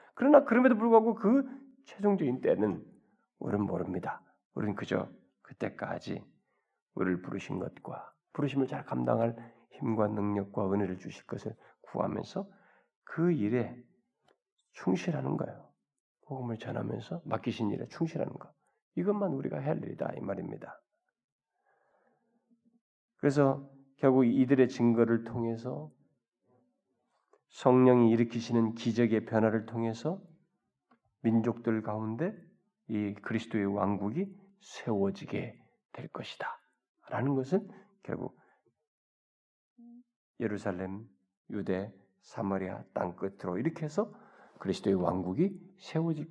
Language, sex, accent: Korean, male, native